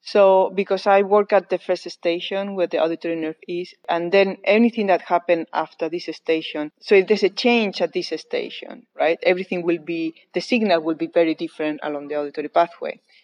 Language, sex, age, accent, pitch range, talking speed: English, female, 30-49, Spanish, 170-205 Hz, 195 wpm